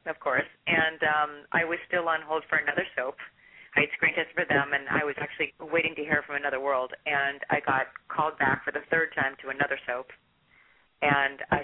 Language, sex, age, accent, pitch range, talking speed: English, female, 30-49, American, 135-155 Hz, 210 wpm